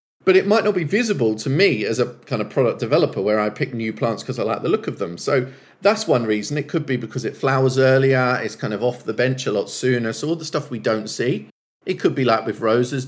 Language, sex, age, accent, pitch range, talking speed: English, male, 40-59, British, 125-180 Hz, 270 wpm